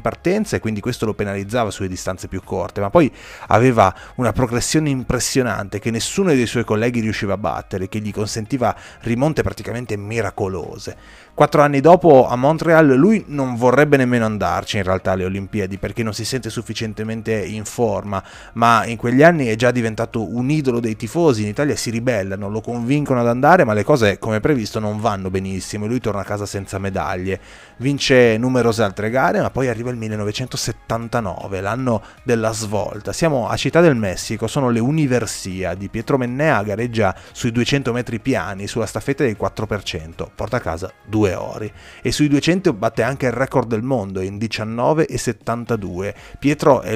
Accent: native